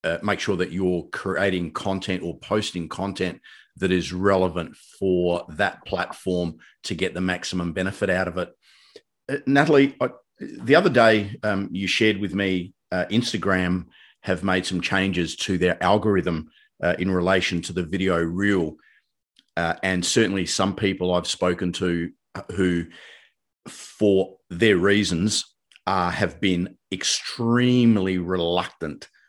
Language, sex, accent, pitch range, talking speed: English, male, Australian, 90-100 Hz, 135 wpm